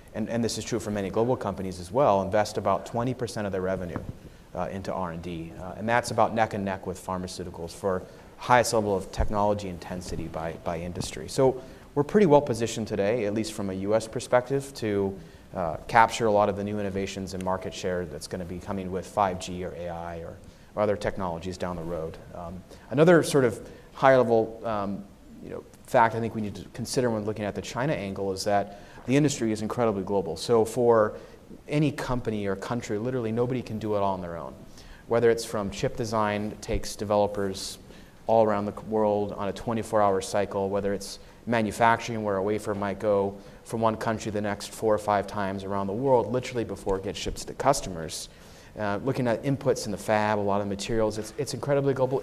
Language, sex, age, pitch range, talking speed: English, male, 30-49, 95-115 Hz, 205 wpm